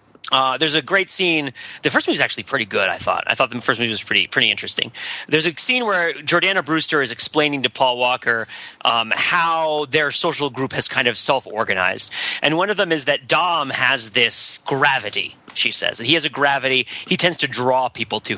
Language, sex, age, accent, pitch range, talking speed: English, male, 30-49, American, 125-165 Hz, 210 wpm